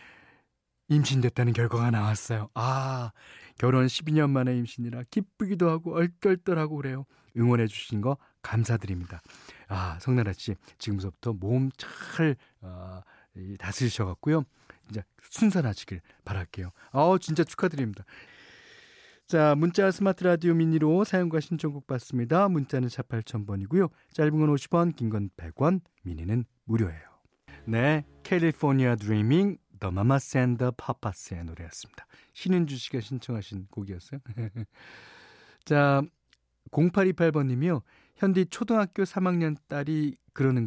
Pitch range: 105-160 Hz